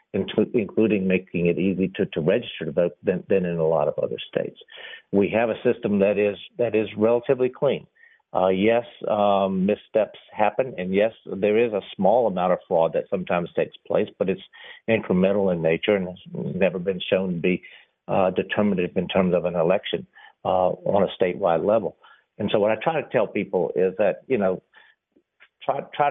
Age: 50-69